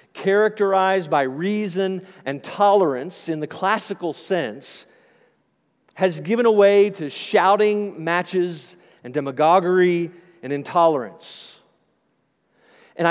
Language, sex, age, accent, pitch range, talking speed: English, male, 40-59, American, 175-210 Hz, 90 wpm